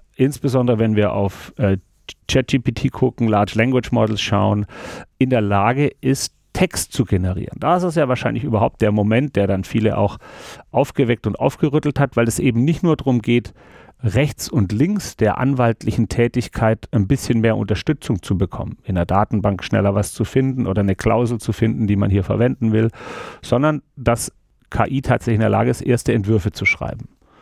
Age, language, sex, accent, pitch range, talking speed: 40-59, German, male, German, 105-130 Hz, 180 wpm